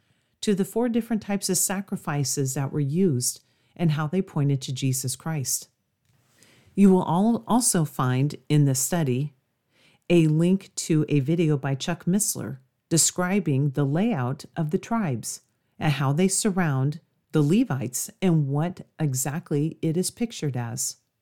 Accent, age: American, 40-59